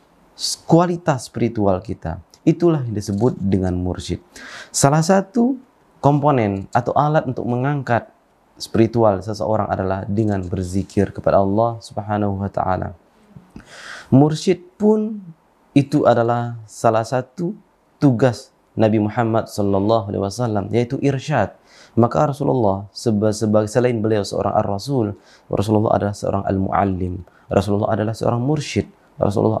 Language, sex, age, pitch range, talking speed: Indonesian, male, 20-39, 100-135 Hz, 110 wpm